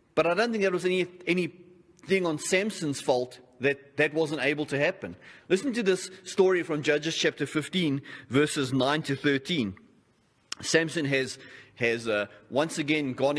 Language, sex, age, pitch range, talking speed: English, male, 30-49, 135-175 Hz, 160 wpm